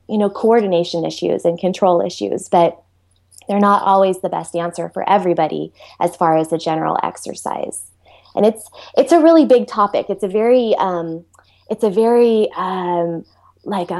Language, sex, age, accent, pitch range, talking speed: English, female, 20-39, American, 175-205 Hz, 165 wpm